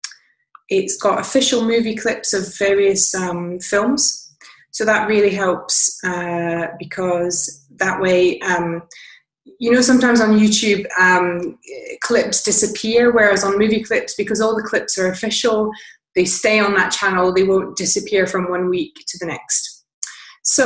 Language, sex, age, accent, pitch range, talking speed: English, female, 20-39, British, 180-215 Hz, 150 wpm